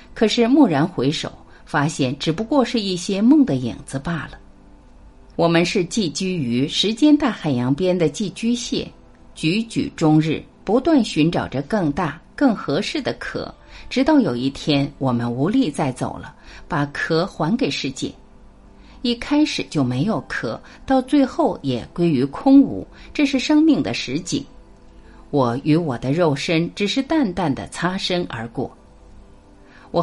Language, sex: Chinese, female